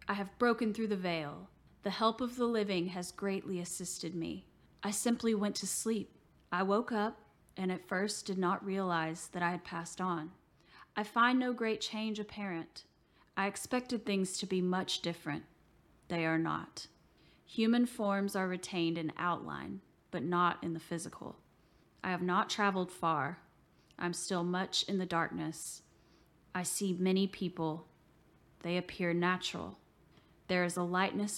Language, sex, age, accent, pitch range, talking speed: English, female, 30-49, American, 170-200 Hz, 160 wpm